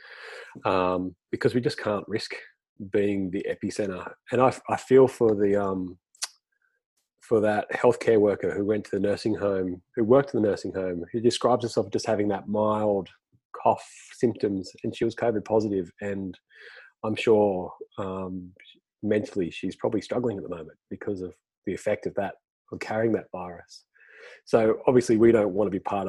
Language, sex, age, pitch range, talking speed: English, male, 30-49, 95-110 Hz, 175 wpm